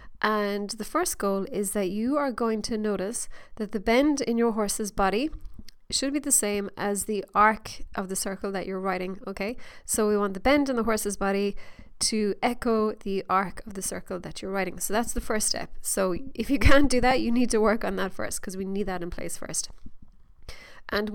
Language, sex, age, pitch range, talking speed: English, female, 20-39, 200-250 Hz, 220 wpm